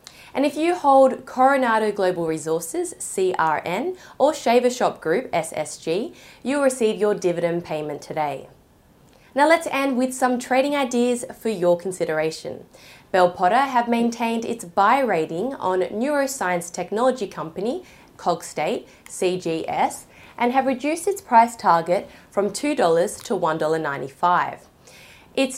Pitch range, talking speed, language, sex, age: 175-260 Hz, 125 wpm, English, female, 20-39